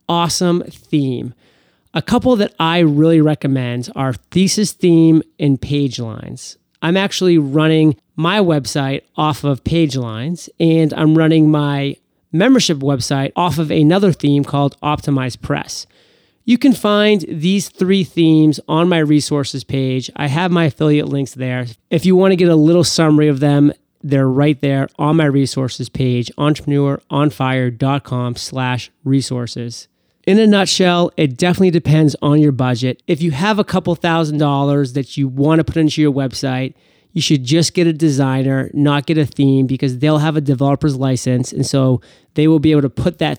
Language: English